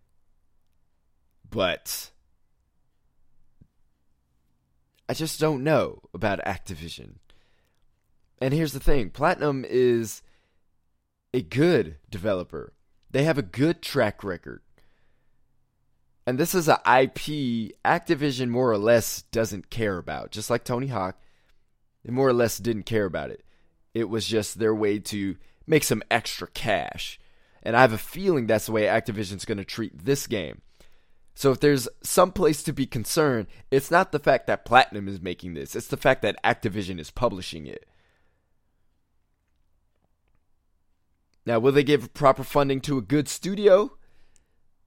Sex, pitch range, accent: male, 90-130 Hz, American